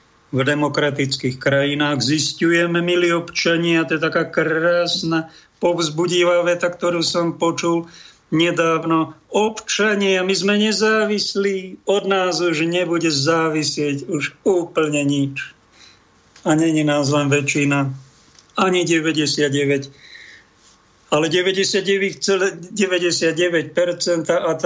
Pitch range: 140-165 Hz